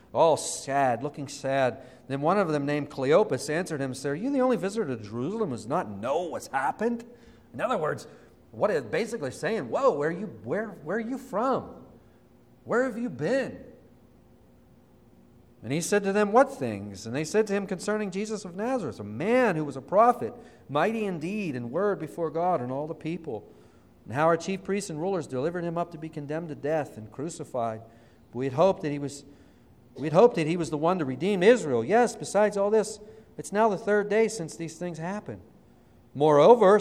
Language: English